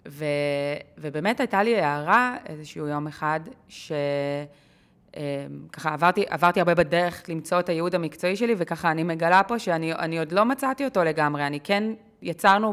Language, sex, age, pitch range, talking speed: Hebrew, female, 20-39, 155-195 Hz, 150 wpm